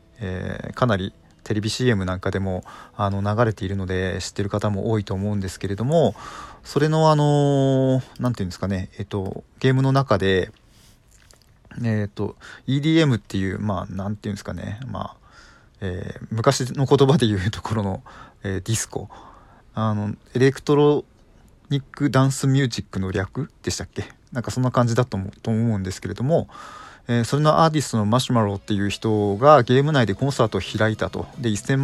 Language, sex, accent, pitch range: Japanese, male, native, 100-130 Hz